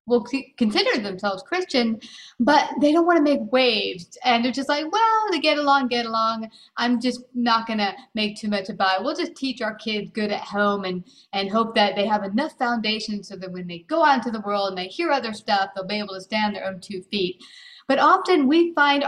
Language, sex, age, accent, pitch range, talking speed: English, female, 40-59, American, 195-255 Hz, 235 wpm